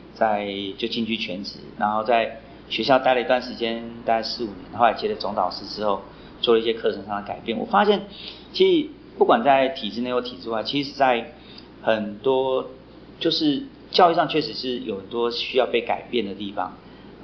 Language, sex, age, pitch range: Chinese, male, 40-59, 110-150 Hz